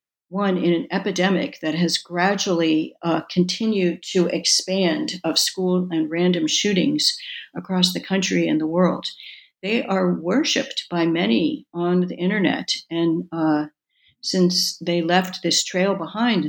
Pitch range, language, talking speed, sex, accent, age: 165-195 Hz, English, 140 wpm, female, American, 60-79